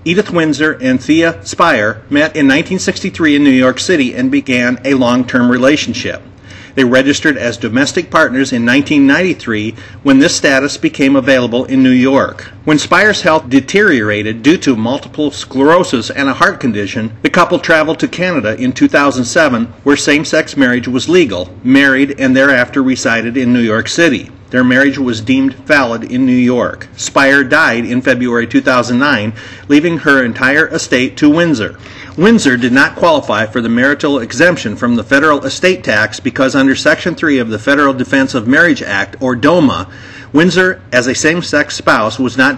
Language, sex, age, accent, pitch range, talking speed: English, male, 50-69, American, 125-155 Hz, 165 wpm